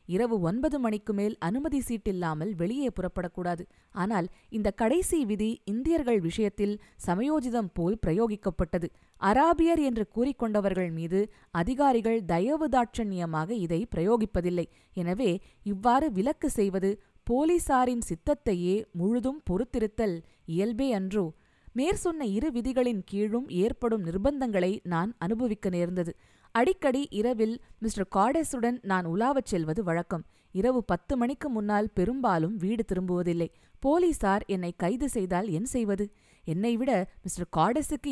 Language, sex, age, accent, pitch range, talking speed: Tamil, female, 20-39, native, 185-245 Hz, 110 wpm